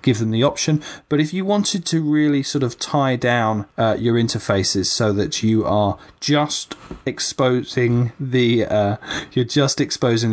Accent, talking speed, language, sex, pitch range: British, 165 wpm, English, male, 105-140 Hz